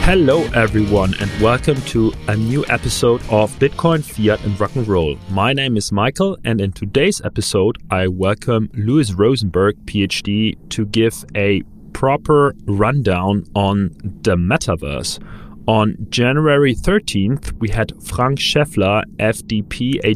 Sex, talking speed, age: male, 135 wpm, 30-49